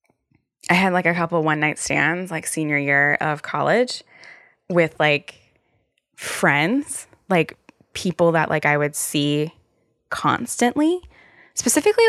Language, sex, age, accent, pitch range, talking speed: English, female, 10-29, American, 155-190 Hz, 120 wpm